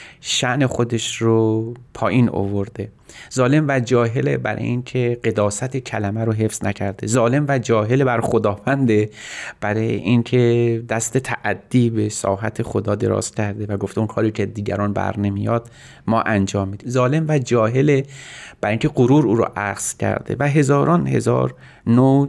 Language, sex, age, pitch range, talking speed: Persian, male, 30-49, 100-125 Hz, 145 wpm